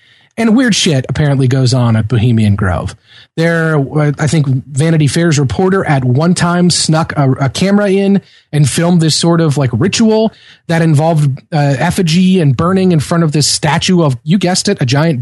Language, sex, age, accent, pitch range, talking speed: English, male, 30-49, American, 140-180 Hz, 185 wpm